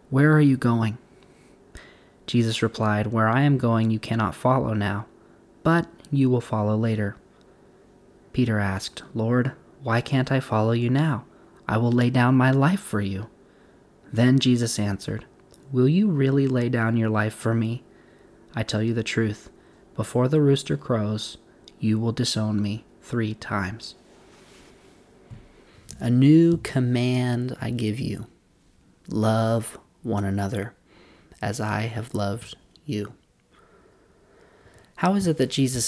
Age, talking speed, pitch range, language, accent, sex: 20-39, 135 wpm, 105-125 Hz, English, American, male